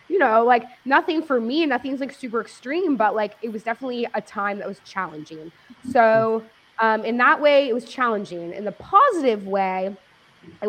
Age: 20-39